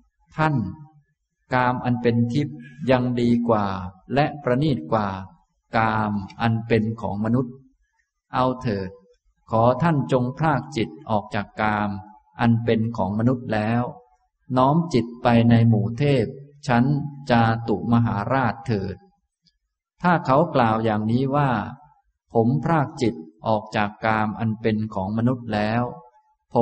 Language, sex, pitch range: Thai, male, 110-140 Hz